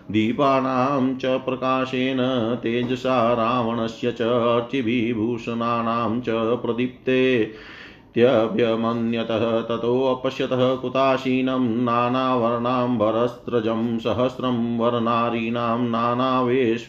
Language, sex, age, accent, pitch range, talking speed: Hindi, male, 30-49, native, 115-130 Hz, 55 wpm